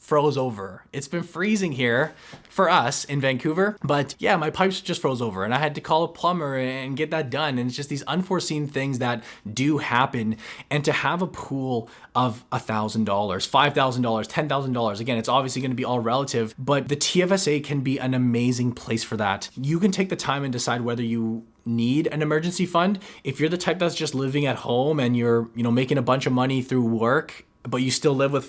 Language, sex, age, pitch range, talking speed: English, male, 20-39, 125-150 Hz, 215 wpm